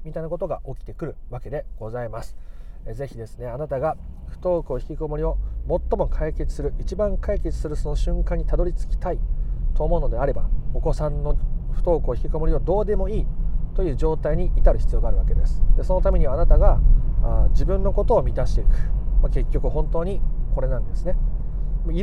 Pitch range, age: 135-180 Hz, 40-59